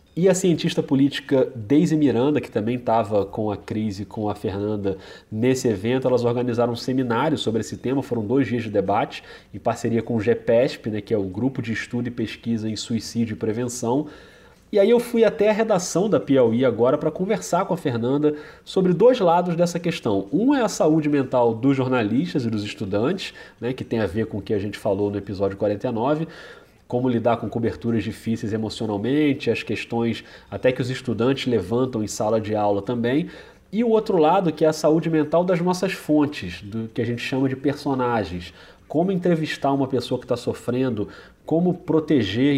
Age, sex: 30-49, male